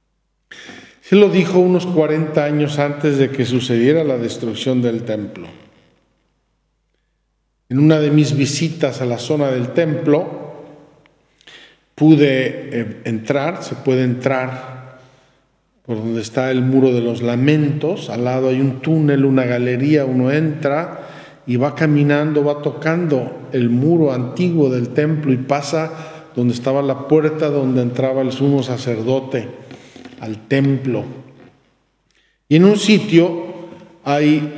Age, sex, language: 50-69, male, Spanish